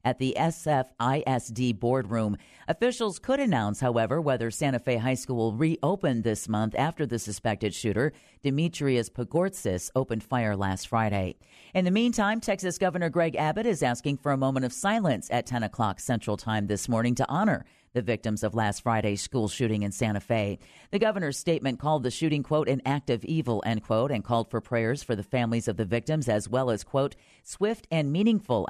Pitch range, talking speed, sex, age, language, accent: 115-160 Hz, 190 wpm, female, 40-59, English, American